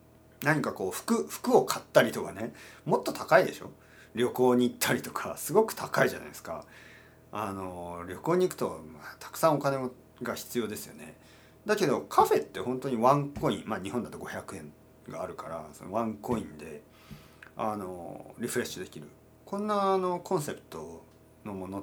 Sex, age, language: male, 40-59, Japanese